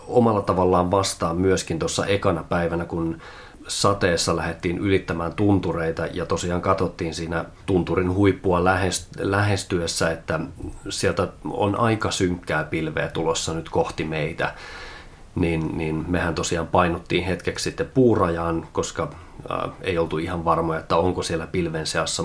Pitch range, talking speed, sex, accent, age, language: 85-100 Hz, 125 wpm, male, native, 30-49, Finnish